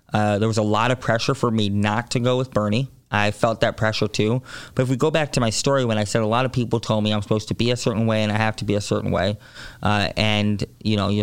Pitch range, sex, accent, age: 105-120 Hz, male, American, 20-39